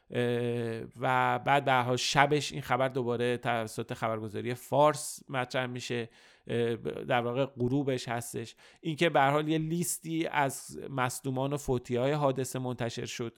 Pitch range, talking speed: 120-140 Hz, 130 wpm